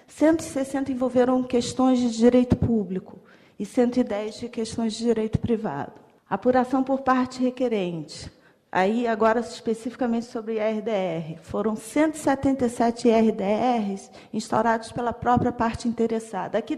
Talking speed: 105 wpm